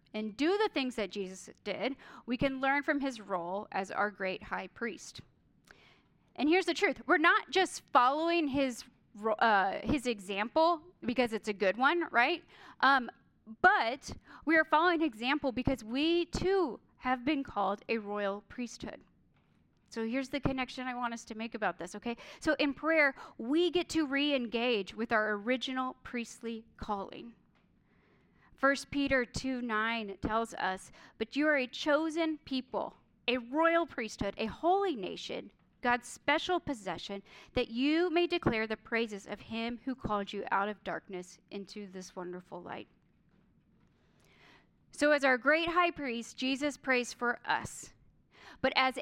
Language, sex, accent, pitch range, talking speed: English, female, American, 220-300 Hz, 155 wpm